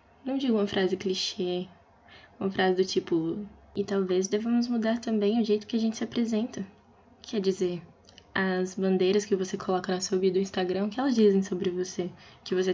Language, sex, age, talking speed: Portuguese, female, 10-29, 190 wpm